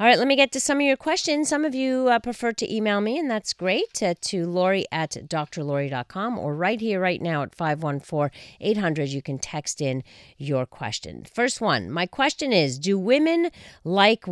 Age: 40-59